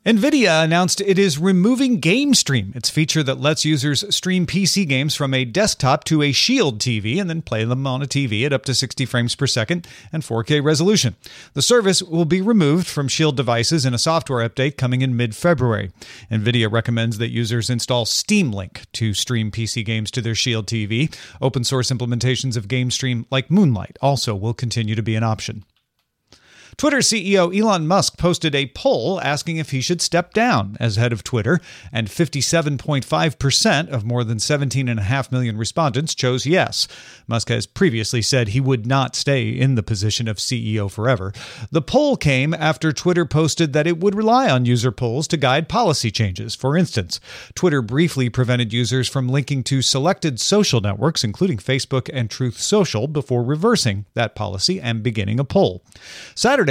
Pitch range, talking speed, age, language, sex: 115-165 Hz, 175 wpm, 40-59, English, male